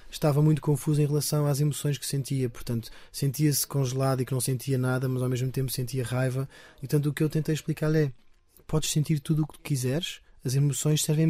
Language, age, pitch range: Portuguese, 20-39, 130-155 Hz